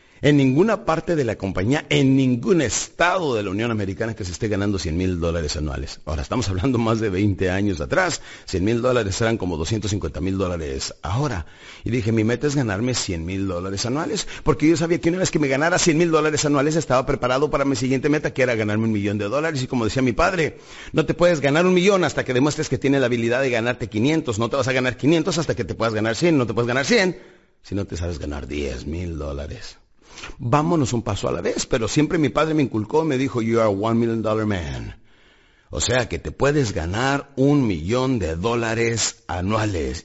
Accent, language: Mexican, Spanish